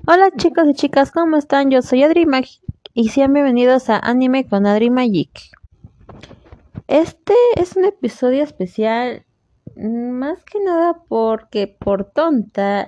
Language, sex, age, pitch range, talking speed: Spanish, female, 20-39, 200-270 Hz, 135 wpm